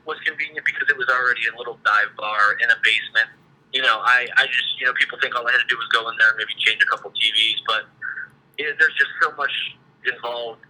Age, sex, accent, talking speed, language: 30-49, male, American, 245 wpm, English